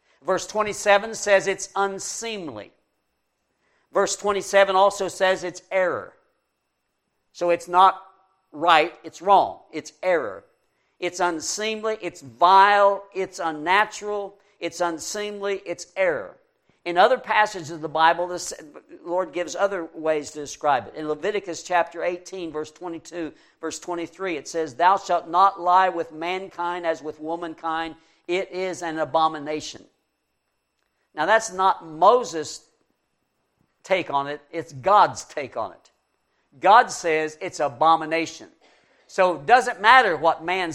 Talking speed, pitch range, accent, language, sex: 130 wpm, 165-200 Hz, American, English, male